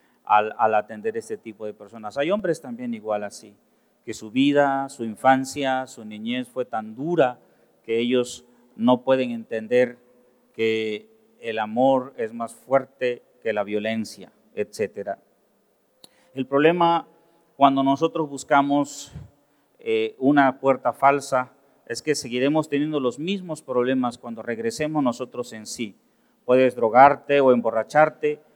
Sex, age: male, 40-59